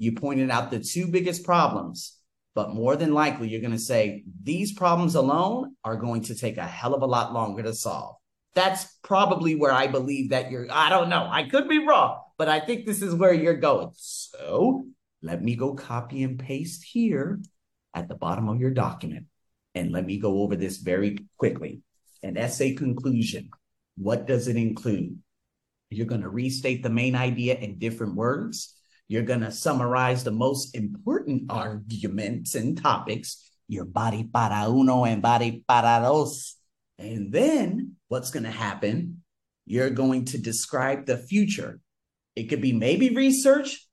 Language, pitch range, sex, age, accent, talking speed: English, 115-175 Hz, male, 40-59, American, 165 wpm